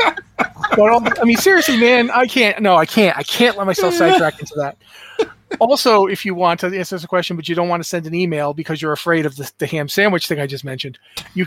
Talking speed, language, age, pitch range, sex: 235 wpm, English, 30-49, 150-190 Hz, male